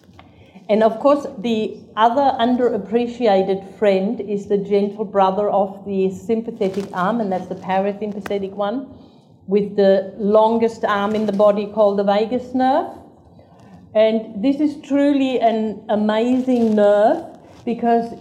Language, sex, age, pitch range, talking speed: English, female, 50-69, 205-240 Hz, 130 wpm